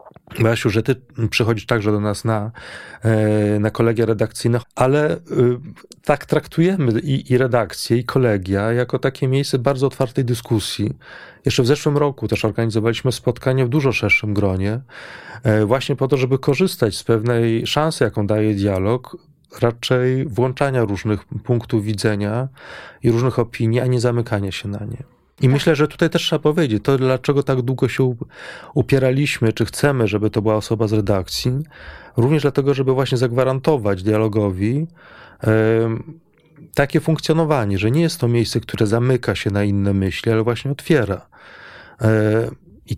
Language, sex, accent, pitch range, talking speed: Polish, male, native, 110-135 Hz, 145 wpm